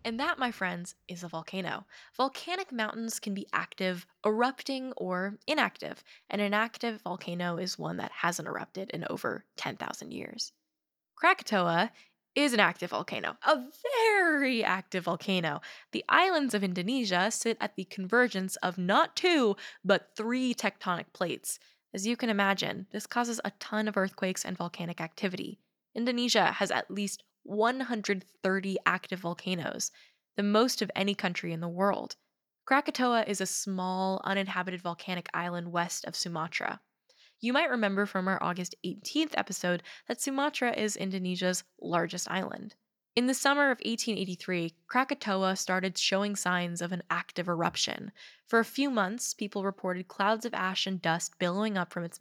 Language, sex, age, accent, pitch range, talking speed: English, female, 10-29, American, 180-235 Hz, 150 wpm